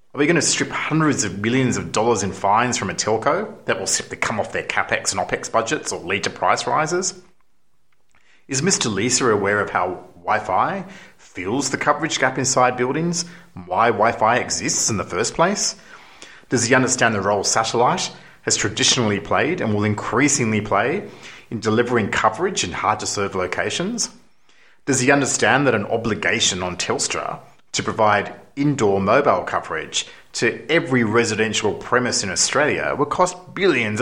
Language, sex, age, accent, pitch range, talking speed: English, male, 30-49, Australian, 105-140 Hz, 160 wpm